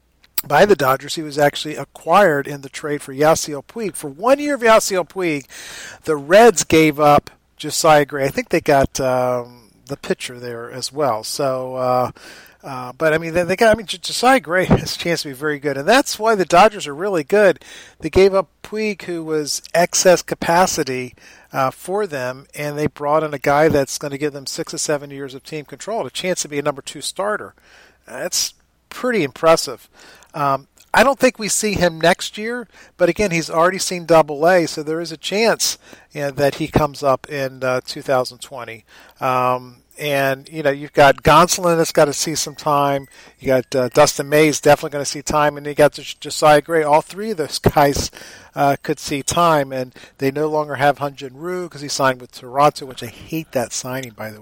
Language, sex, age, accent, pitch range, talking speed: English, male, 40-59, American, 130-165 Hz, 210 wpm